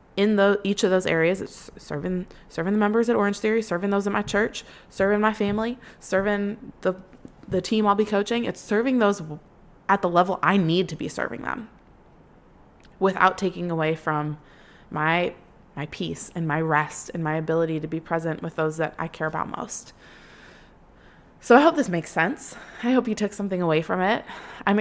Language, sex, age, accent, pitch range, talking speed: English, female, 20-39, American, 165-205 Hz, 190 wpm